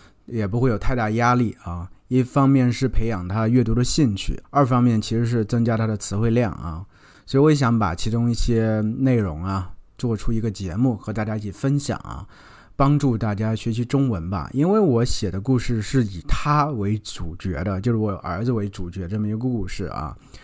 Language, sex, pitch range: Chinese, male, 100-130 Hz